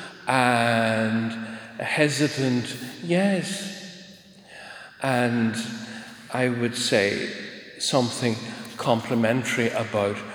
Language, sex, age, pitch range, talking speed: English, male, 50-69, 110-145 Hz, 65 wpm